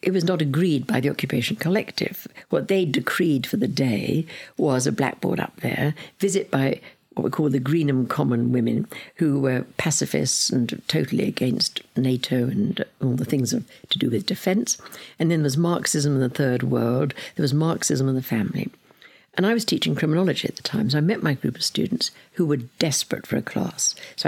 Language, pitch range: English, 130-165 Hz